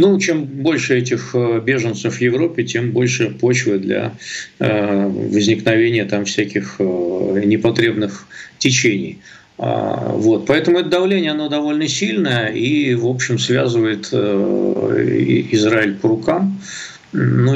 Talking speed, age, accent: 105 wpm, 50-69, native